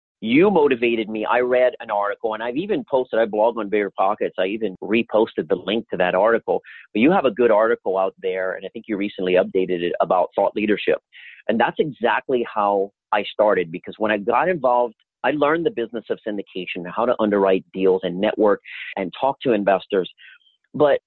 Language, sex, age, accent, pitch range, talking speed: English, male, 40-59, American, 95-130 Hz, 200 wpm